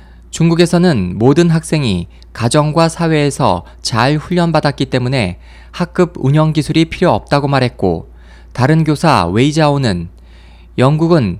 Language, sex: Korean, male